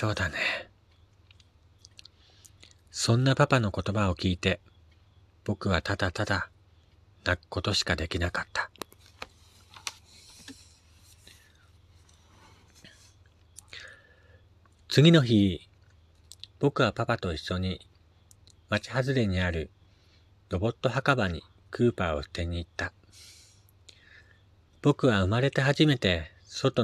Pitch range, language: 90-105 Hz, Japanese